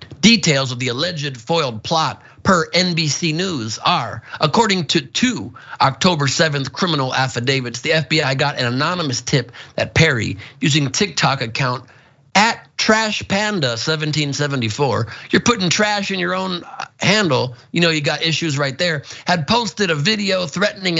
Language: English